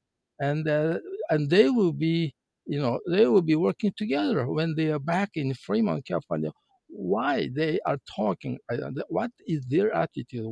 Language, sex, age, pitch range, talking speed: English, male, 50-69, 150-205 Hz, 165 wpm